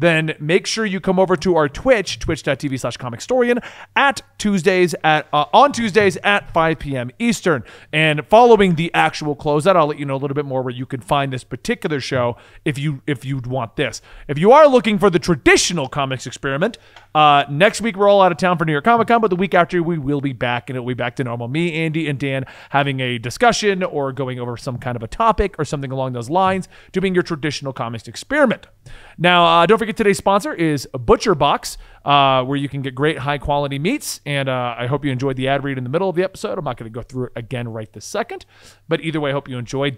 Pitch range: 135-195 Hz